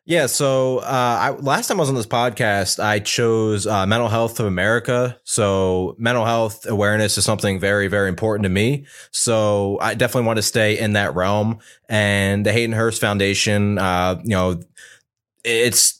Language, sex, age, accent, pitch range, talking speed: English, male, 20-39, American, 100-115 Hz, 175 wpm